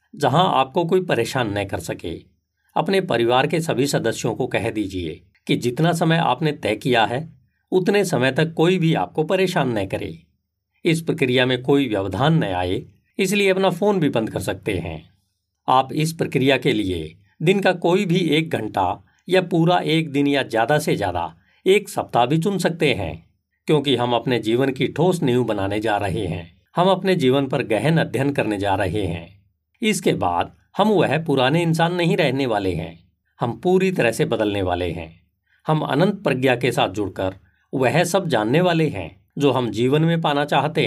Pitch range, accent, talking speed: 95-160 Hz, native, 185 wpm